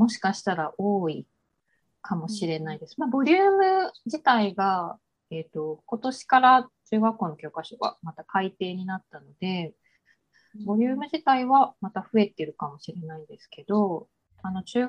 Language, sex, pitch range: Japanese, female, 175-245 Hz